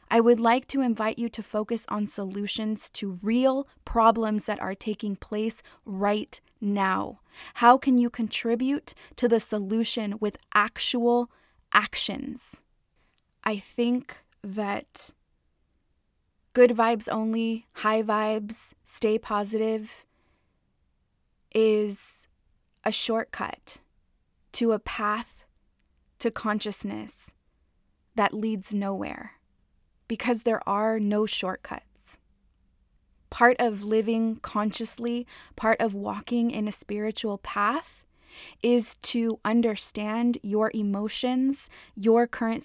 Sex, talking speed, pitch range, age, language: female, 105 wpm, 210-235 Hz, 20-39, English